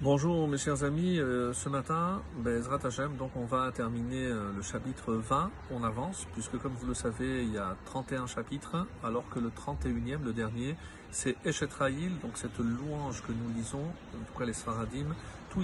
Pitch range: 115-145 Hz